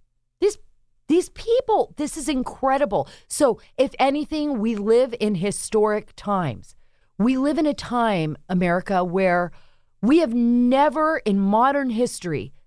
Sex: female